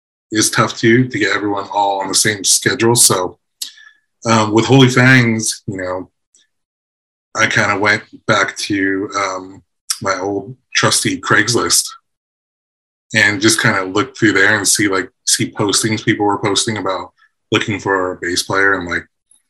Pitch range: 90-115 Hz